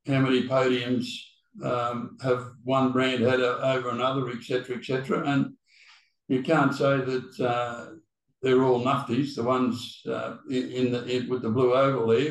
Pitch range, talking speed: 120-140 Hz, 170 wpm